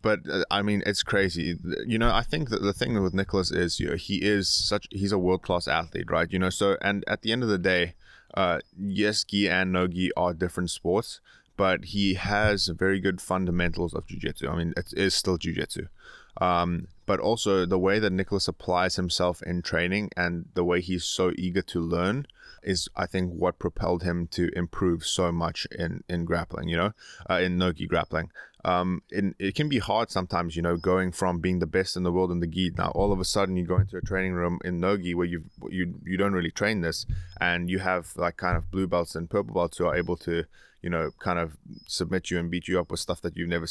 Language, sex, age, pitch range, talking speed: Polish, male, 20-39, 85-100 Hz, 230 wpm